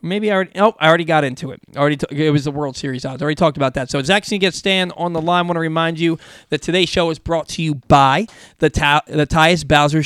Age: 20-39